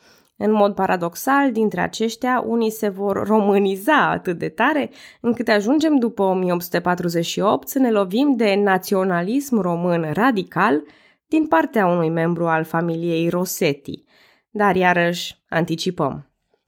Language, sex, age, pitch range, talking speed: Romanian, female, 20-39, 165-235 Hz, 120 wpm